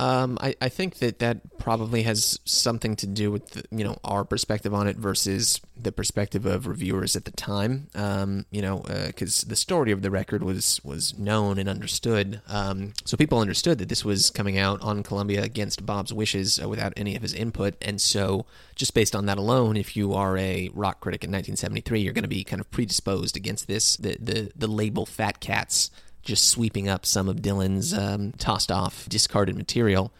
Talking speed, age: 200 wpm, 20-39